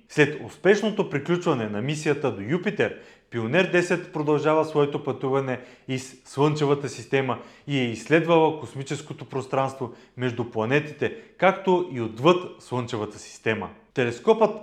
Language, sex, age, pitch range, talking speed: Bulgarian, male, 30-49, 125-170 Hz, 115 wpm